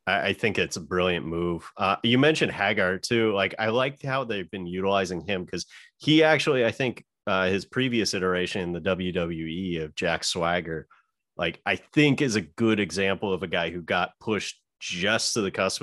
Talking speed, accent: 195 wpm, American